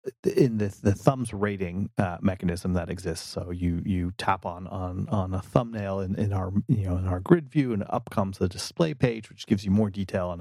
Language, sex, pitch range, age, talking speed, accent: English, male, 95-110 Hz, 30-49, 225 wpm, American